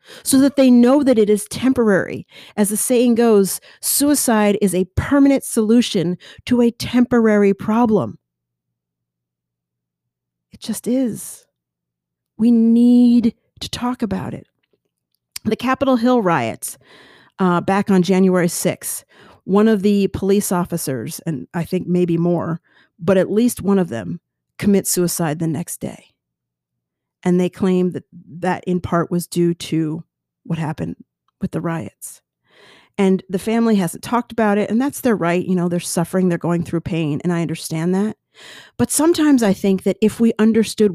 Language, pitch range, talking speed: English, 160-220 Hz, 155 wpm